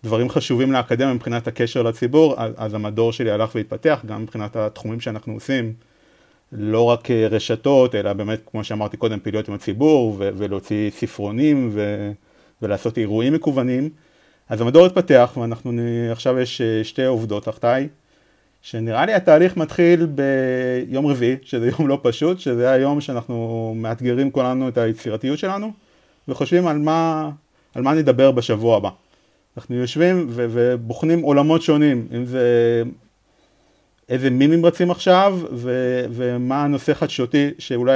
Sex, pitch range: male, 115-145 Hz